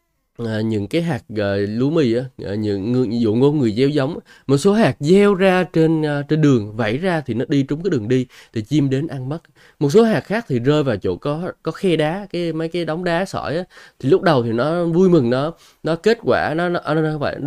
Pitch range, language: 120-165 Hz, Vietnamese